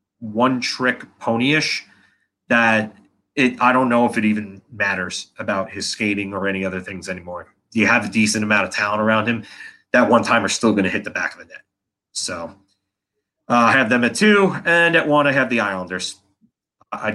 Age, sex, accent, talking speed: 30-49, male, American, 200 wpm